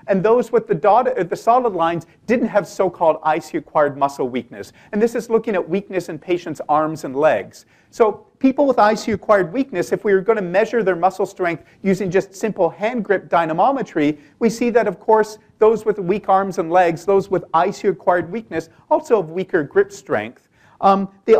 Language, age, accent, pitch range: English, 40-59, American, 180-230 Hz